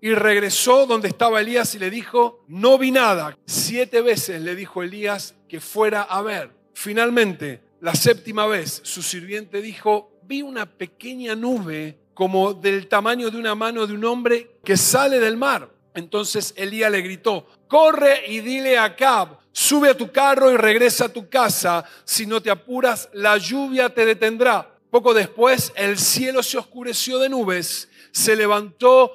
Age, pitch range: 40-59, 190-235 Hz